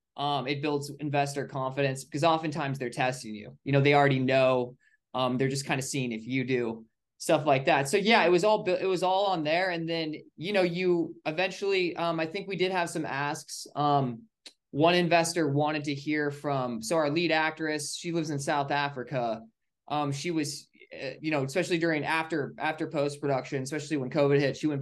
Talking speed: 205 wpm